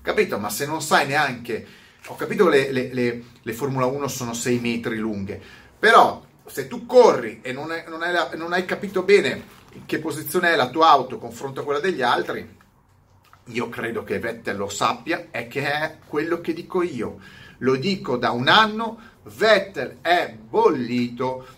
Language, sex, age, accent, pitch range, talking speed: Italian, male, 40-59, native, 120-195 Hz, 165 wpm